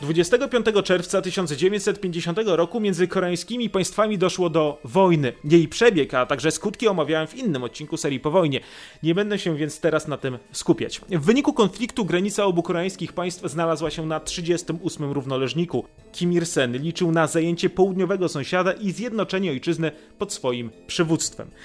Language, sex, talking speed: Polish, male, 155 wpm